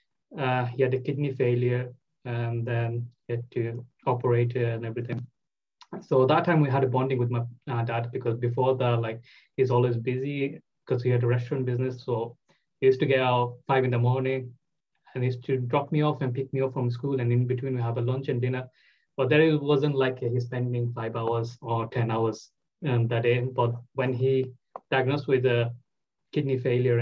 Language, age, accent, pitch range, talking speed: English, 20-39, Indian, 120-130 Hz, 205 wpm